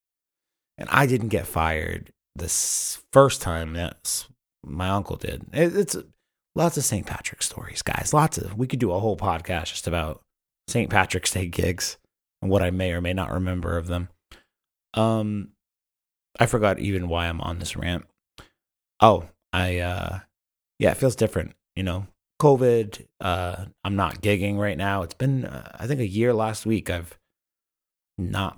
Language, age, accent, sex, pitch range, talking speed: English, 30-49, American, male, 85-110 Hz, 165 wpm